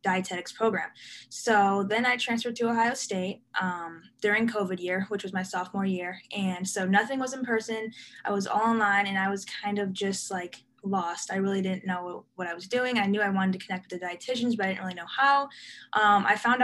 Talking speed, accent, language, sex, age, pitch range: 225 wpm, American, English, female, 10-29, 190-215 Hz